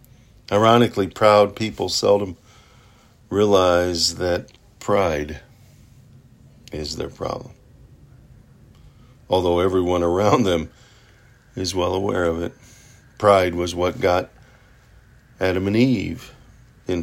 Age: 50-69